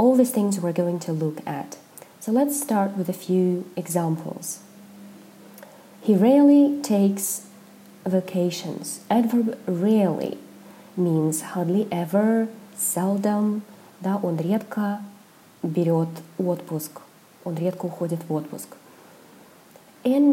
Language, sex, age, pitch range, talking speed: Russian, female, 30-49, 175-220 Hz, 90 wpm